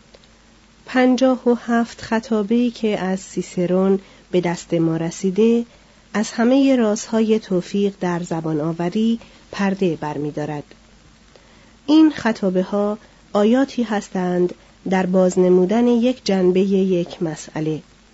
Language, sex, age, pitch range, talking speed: Persian, female, 40-59, 180-225 Hz, 100 wpm